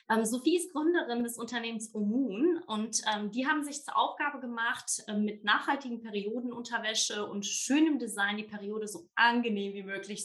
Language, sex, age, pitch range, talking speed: German, female, 20-39, 215-255 Hz, 160 wpm